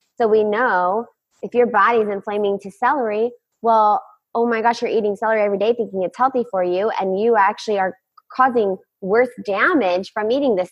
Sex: female